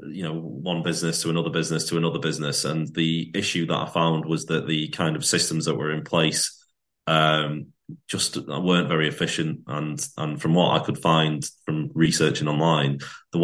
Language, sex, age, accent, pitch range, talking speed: English, male, 30-49, British, 80-85 Hz, 190 wpm